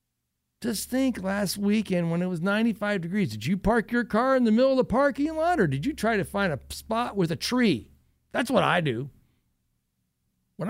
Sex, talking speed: male, 210 wpm